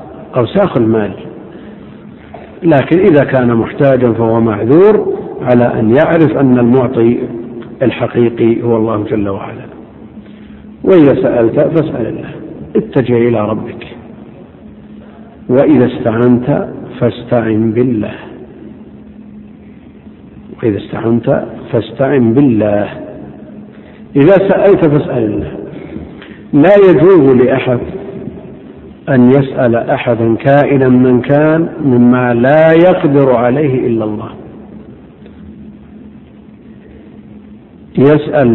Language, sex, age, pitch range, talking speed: Arabic, male, 60-79, 120-150 Hz, 80 wpm